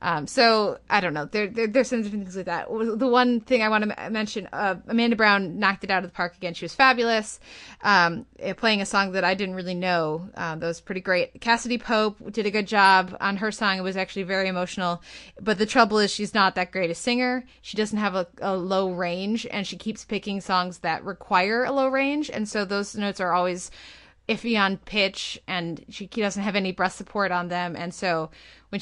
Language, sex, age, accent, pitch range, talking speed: English, female, 20-39, American, 185-225 Hz, 230 wpm